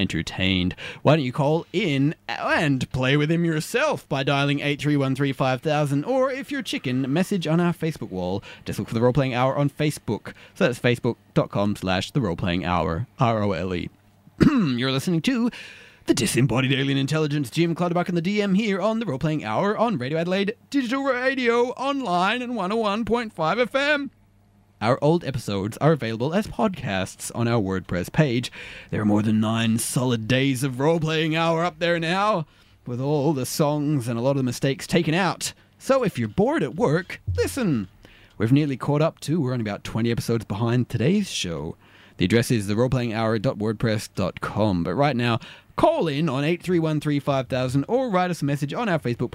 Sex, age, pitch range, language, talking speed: male, 30-49, 115-170 Hz, English, 180 wpm